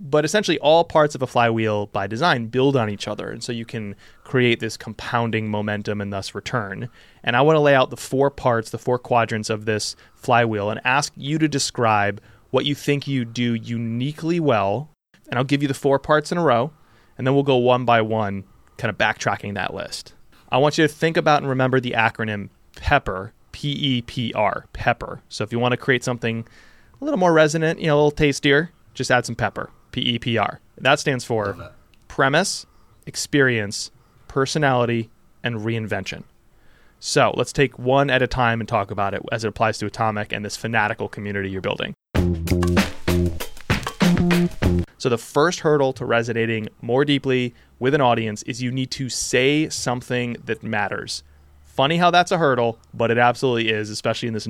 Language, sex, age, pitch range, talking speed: English, male, 20-39, 110-135 Hz, 190 wpm